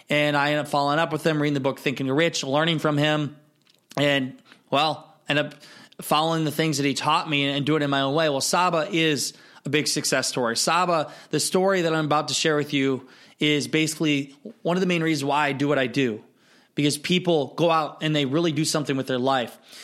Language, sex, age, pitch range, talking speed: English, male, 20-39, 140-155 Hz, 235 wpm